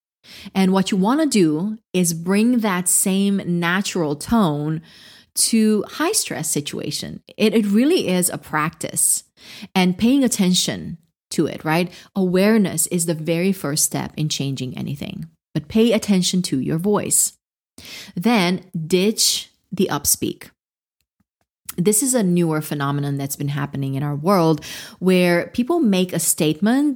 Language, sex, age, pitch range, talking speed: English, female, 30-49, 160-210 Hz, 140 wpm